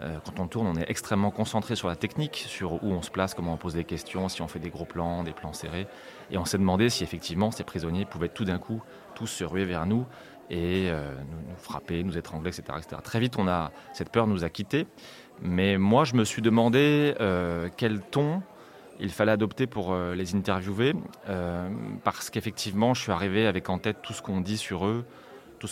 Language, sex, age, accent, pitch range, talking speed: French, male, 30-49, French, 85-110 Hz, 225 wpm